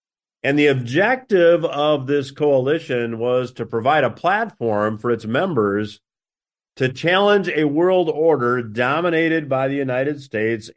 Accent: American